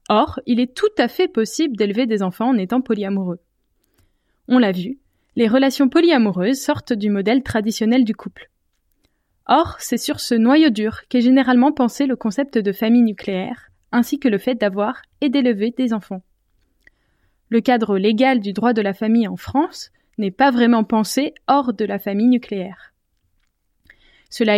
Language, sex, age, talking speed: French, female, 20-39, 165 wpm